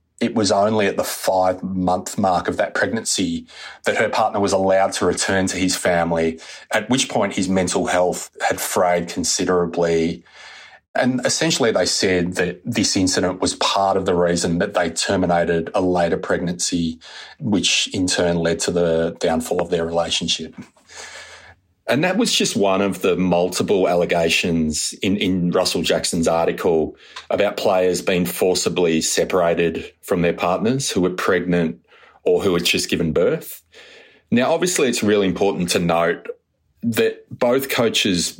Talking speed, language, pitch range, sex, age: 155 wpm, English, 85-95 Hz, male, 30-49